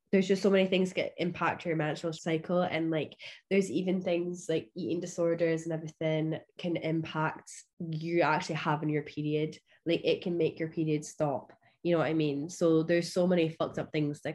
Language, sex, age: English, female, 10-29